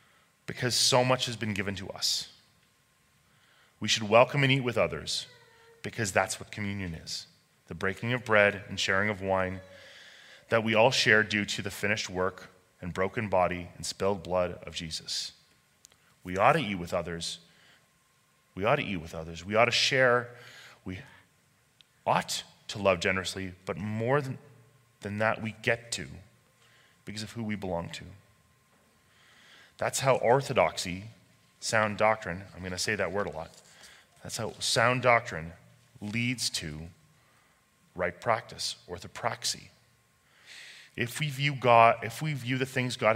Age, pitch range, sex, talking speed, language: 30-49, 95-120 Hz, male, 155 wpm, English